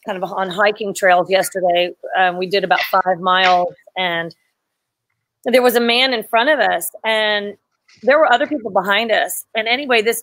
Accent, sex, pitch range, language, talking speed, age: American, female, 210-255 Hz, English, 180 wpm, 40-59